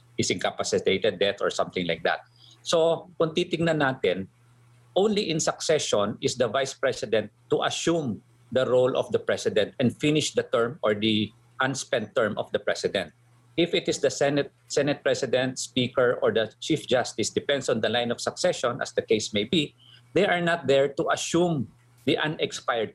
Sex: male